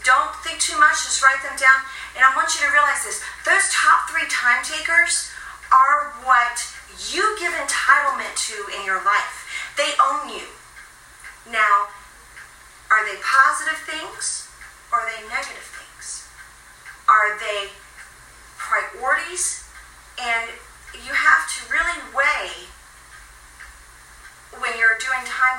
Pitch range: 215-285 Hz